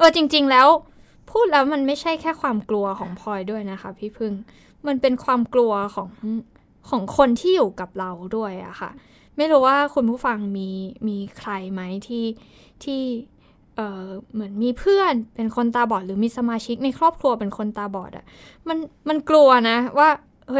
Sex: female